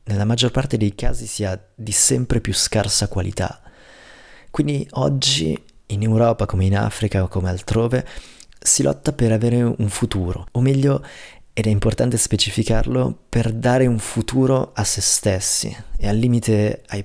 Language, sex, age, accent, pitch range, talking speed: Italian, male, 30-49, native, 95-115 Hz, 155 wpm